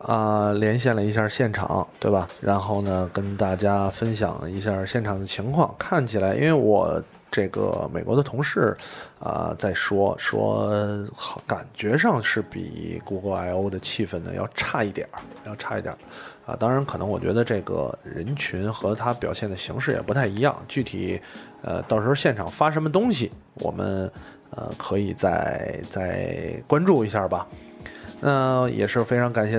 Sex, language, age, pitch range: male, Chinese, 20-39, 100-130 Hz